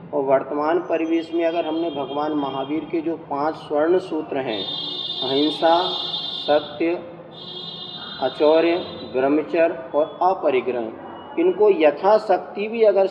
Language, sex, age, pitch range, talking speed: Hindi, male, 40-59, 150-190 Hz, 110 wpm